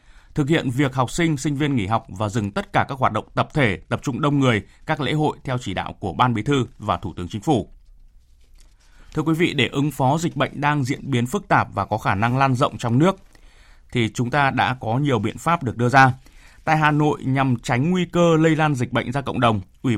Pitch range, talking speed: 110-145 Hz, 250 wpm